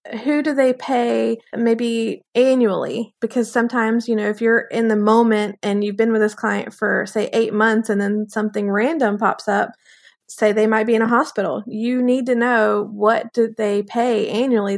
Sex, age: female, 20-39